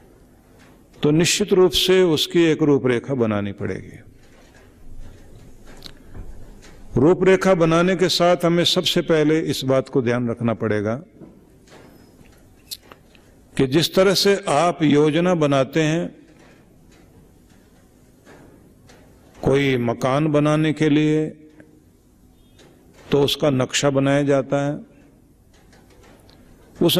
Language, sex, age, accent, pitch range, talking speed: Hindi, male, 50-69, native, 130-165 Hz, 95 wpm